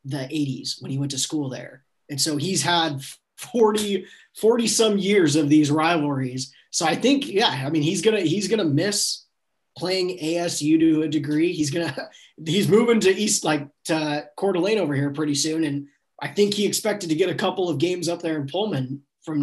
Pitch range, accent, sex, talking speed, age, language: 140-175 Hz, American, male, 200 wpm, 20-39, English